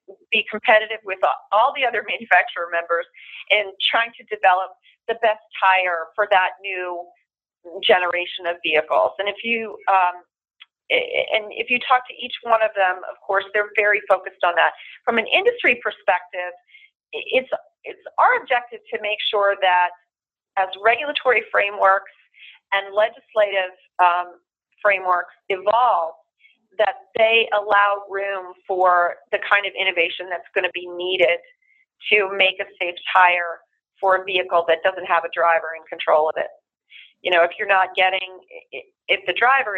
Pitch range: 180-230 Hz